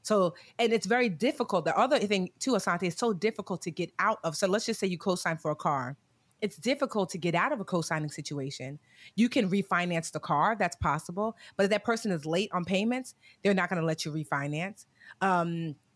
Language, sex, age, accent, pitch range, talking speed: English, female, 30-49, American, 170-215 Hz, 220 wpm